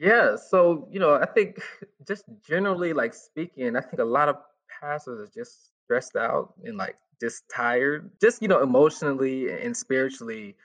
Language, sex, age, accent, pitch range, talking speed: English, male, 20-39, American, 135-225 Hz, 170 wpm